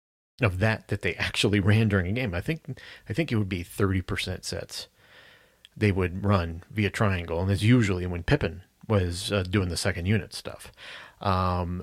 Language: English